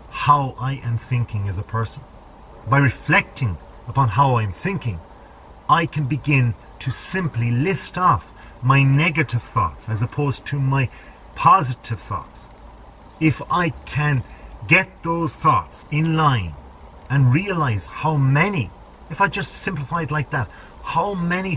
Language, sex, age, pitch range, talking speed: English, male, 40-59, 110-155 Hz, 135 wpm